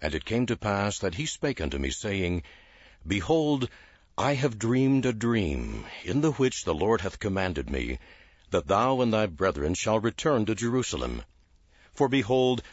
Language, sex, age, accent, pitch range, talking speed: English, male, 60-79, American, 80-115 Hz, 170 wpm